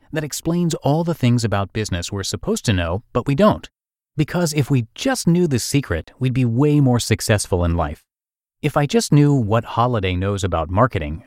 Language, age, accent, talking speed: English, 30-49, American, 195 wpm